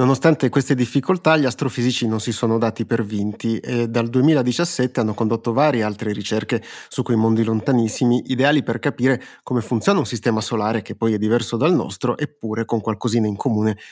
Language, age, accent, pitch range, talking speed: Italian, 30-49, native, 115-130 Hz, 180 wpm